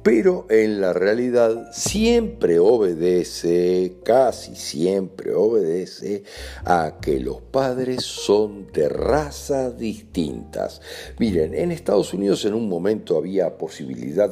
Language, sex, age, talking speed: Spanish, male, 60-79, 110 wpm